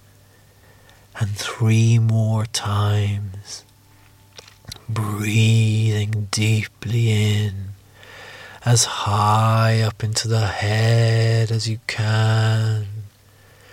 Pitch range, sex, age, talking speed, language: 100-110 Hz, male, 40-59, 70 wpm, English